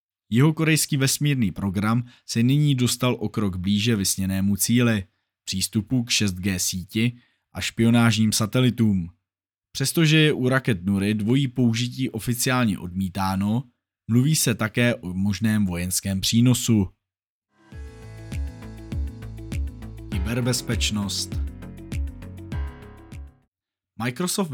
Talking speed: 90 wpm